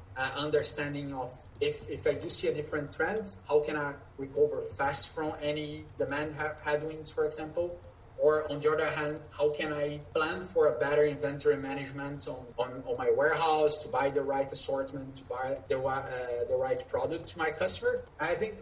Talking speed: 195 wpm